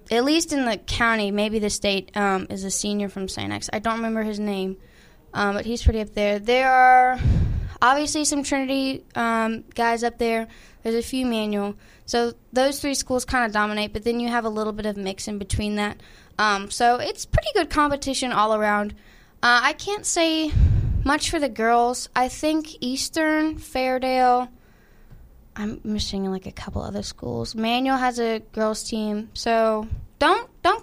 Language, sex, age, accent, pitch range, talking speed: English, female, 10-29, American, 205-255 Hz, 180 wpm